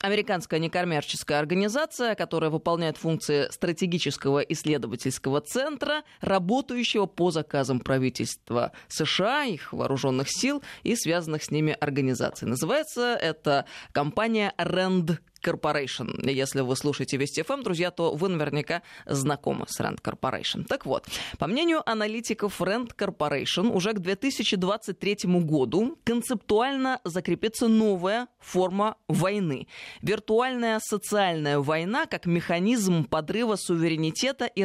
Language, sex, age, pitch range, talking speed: Russian, female, 20-39, 155-220 Hz, 110 wpm